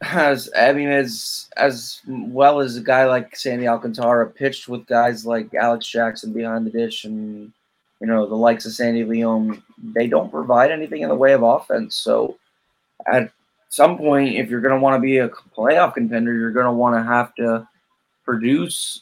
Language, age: English, 20-39